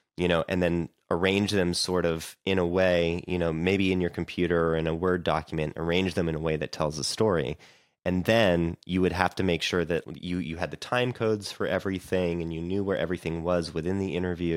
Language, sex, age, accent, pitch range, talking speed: English, male, 30-49, American, 80-95 Hz, 235 wpm